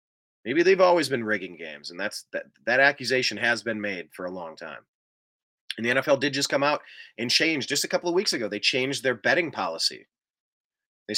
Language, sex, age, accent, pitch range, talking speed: English, male, 30-49, American, 105-145 Hz, 210 wpm